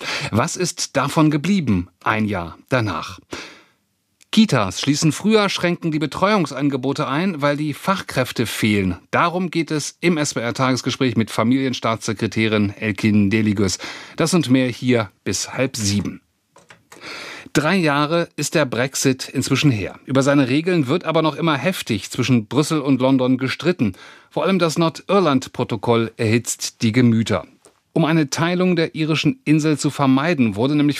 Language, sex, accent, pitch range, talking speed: German, male, German, 125-160 Hz, 135 wpm